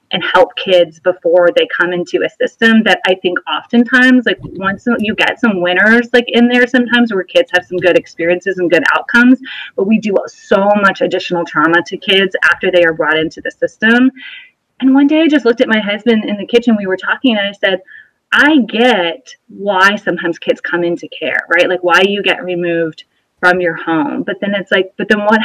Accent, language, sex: American, English, female